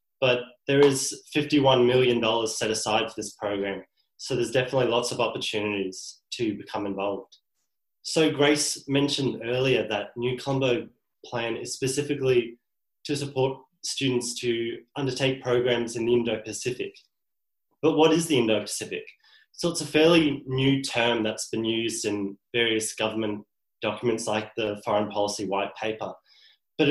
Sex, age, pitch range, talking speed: male, 20-39, 110-140 Hz, 140 wpm